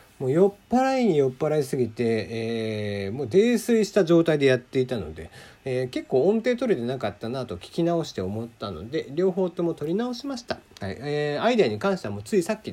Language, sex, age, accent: Japanese, male, 40-59, native